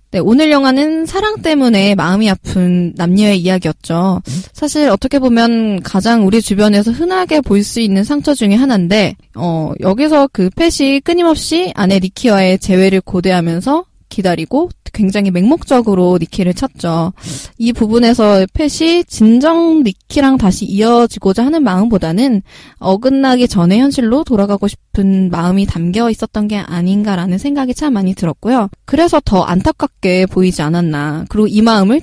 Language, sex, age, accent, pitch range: Korean, female, 20-39, native, 190-270 Hz